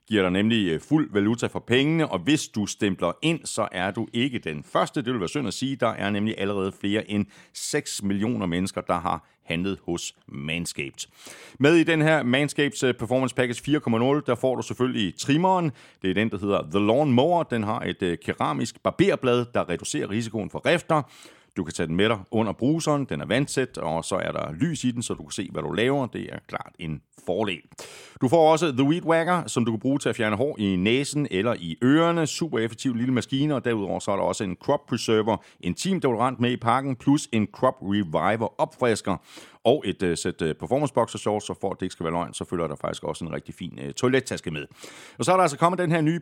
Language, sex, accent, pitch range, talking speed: Danish, male, native, 100-135 Hz, 225 wpm